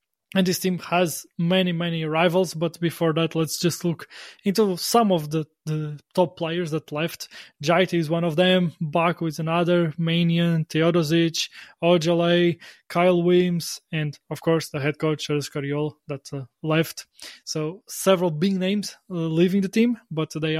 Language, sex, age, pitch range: English, male, 20-39, 160-185 Hz